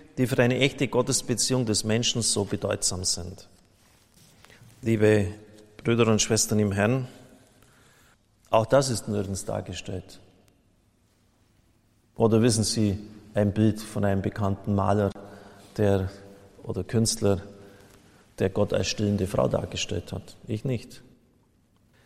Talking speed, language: 110 wpm, German